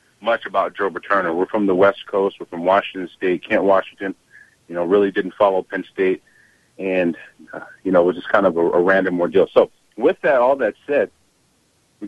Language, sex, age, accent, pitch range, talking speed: English, male, 40-59, American, 95-115 Hz, 210 wpm